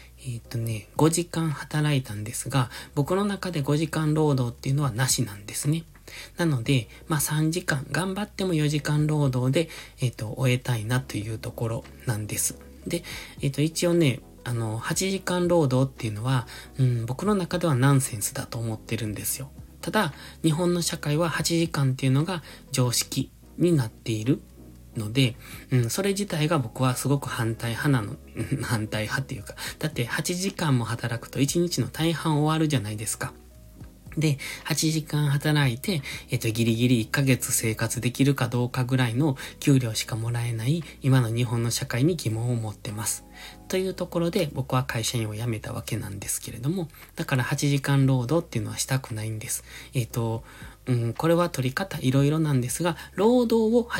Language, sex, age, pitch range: Japanese, male, 20-39, 115-155 Hz